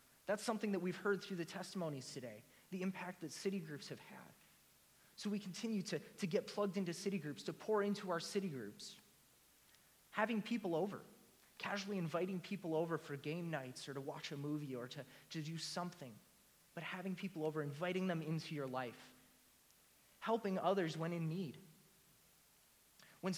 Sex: male